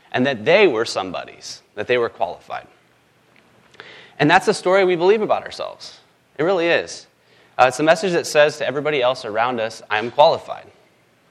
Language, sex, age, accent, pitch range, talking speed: English, male, 30-49, American, 130-185 Hz, 180 wpm